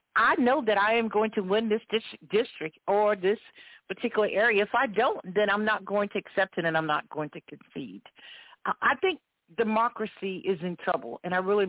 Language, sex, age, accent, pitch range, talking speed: English, female, 50-69, American, 180-225 Hz, 200 wpm